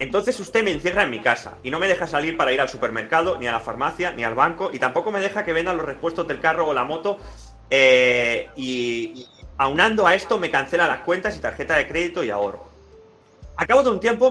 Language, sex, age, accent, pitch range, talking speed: Spanish, male, 30-49, Spanish, 115-175 Hz, 240 wpm